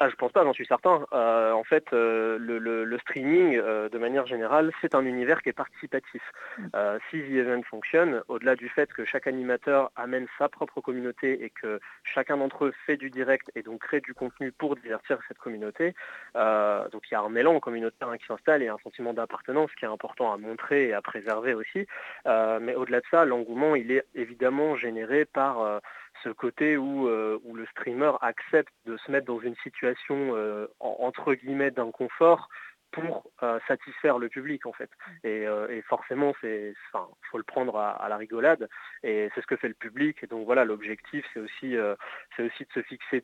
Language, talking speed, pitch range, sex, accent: French, 205 wpm, 115-140 Hz, male, French